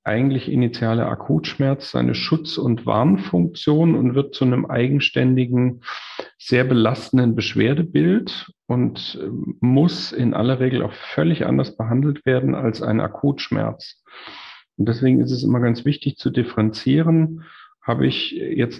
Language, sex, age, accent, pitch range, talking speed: German, male, 40-59, German, 110-140 Hz, 130 wpm